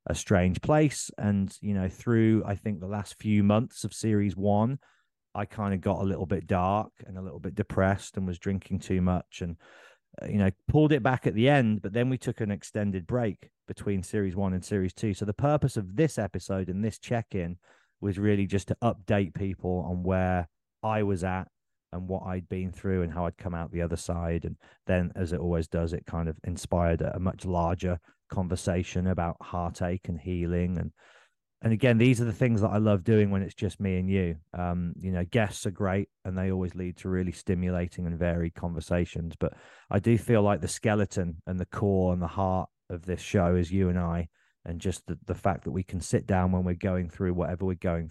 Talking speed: 220 wpm